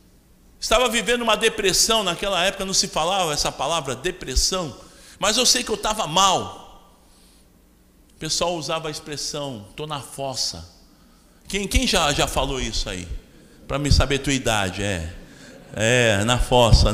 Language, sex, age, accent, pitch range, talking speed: Portuguese, male, 50-69, Brazilian, 140-235 Hz, 155 wpm